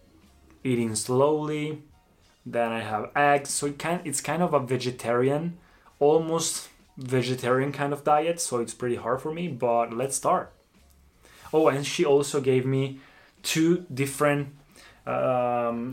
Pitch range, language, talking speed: 120-145 Hz, Italian, 140 wpm